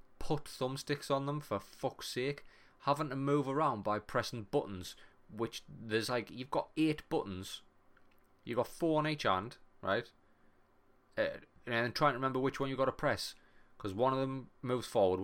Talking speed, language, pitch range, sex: 180 wpm, English, 100-120 Hz, male